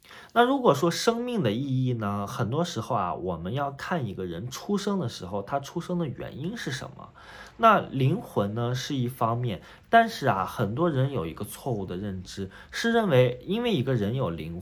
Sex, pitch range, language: male, 105-175 Hz, Chinese